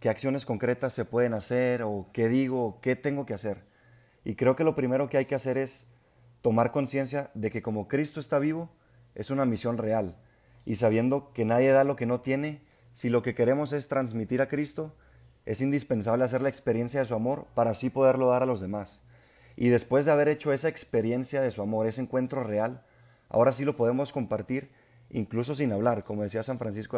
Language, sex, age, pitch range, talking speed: Spanish, male, 30-49, 115-135 Hz, 205 wpm